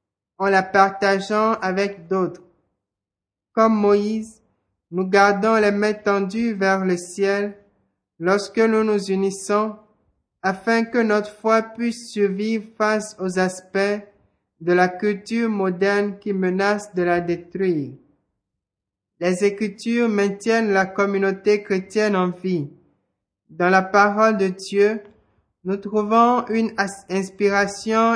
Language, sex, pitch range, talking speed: French, male, 185-215 Hz, 115 wpm